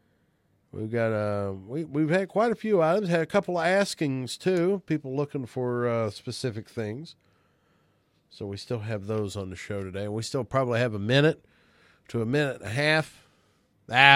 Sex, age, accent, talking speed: male, 40-59, American, 185 wpm